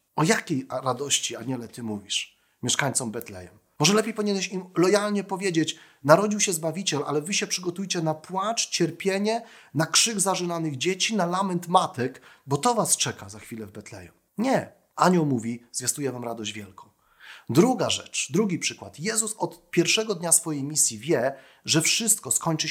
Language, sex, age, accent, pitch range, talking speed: Polish, male, 40-59, native, 130-185 Hz, 160 wpm